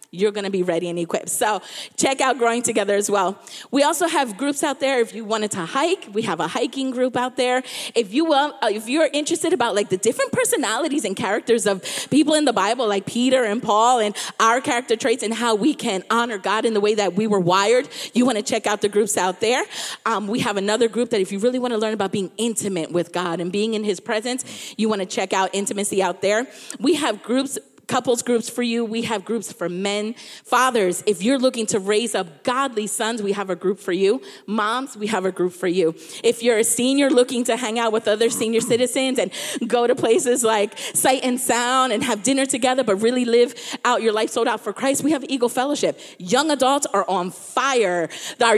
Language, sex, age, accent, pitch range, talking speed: English, female, 30-49, American, 210-270 Hz, 235 wpm